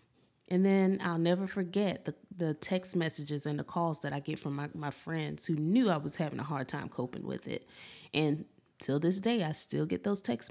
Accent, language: American, English